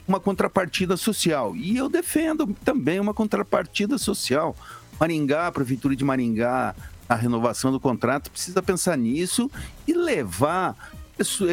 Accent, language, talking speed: Brazilian, Portuguese, 130 wpm